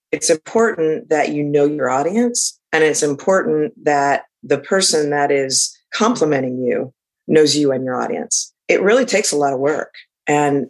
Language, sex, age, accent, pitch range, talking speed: English, female, 40-59, American, 140-160 Hz, 170 wpm